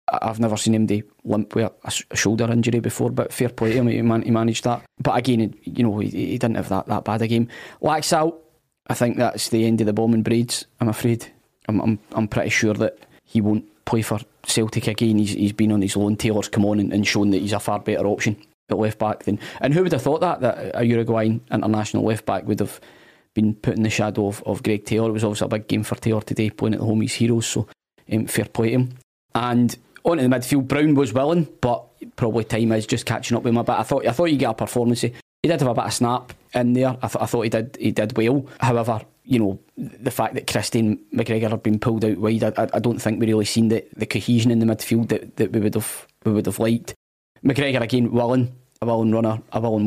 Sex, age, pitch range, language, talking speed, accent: male, 20-39, 110-120 Hz, English, 255 wpm, British